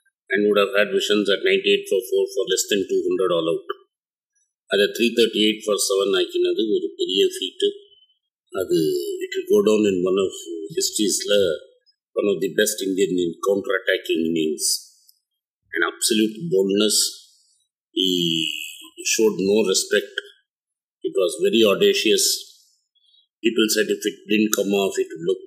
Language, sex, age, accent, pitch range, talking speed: Tamil, male, 50-69, native, 350-410 Hz, 140 wpm